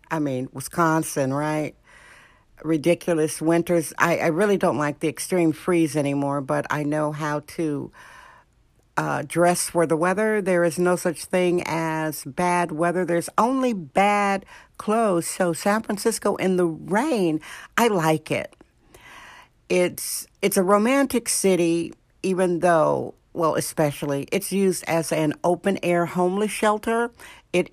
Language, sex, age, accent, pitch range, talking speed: English, female, 60-79, American, 165-205 Hz, 135 wpm